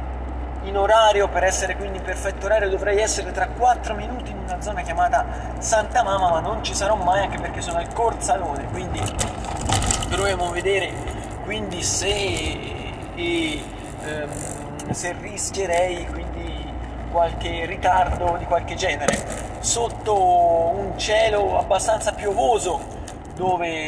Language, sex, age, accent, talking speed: Italian, male, 30-49, native, 125 wpm